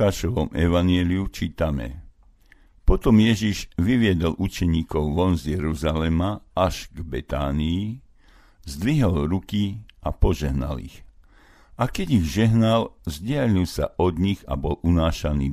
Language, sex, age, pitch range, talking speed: Slovak, male, 60-79, 75-100 Hz, 110 wpm